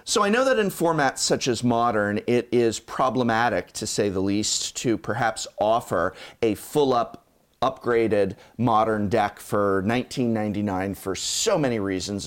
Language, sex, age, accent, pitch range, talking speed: English, male, 30-49, American, 110-150 Hz, 145 wpm